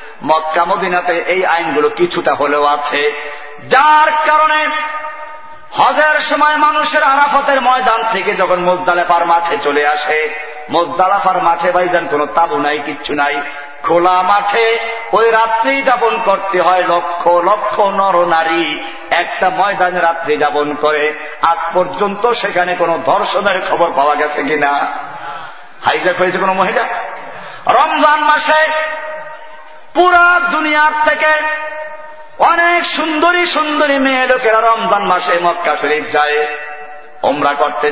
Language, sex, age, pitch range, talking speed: Bengali, male, 50-69, 150-250 Hz, 110 wpm